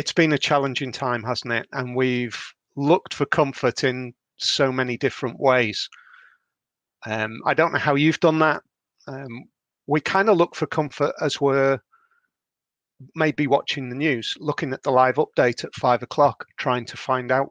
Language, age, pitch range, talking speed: English, 40-59, 125-145 Hz, 170 wpm